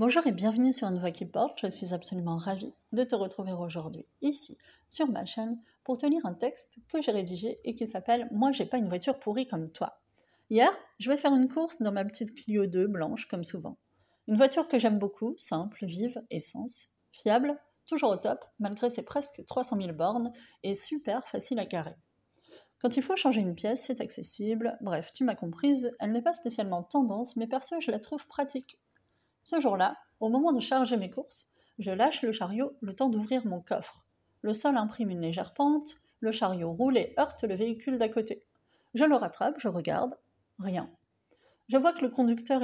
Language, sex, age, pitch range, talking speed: French, female, 30-49, 205-265 Hz, 200 wpm